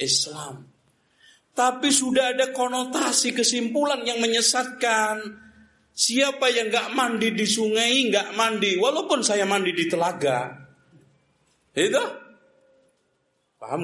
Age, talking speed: 50-69, 100 wpm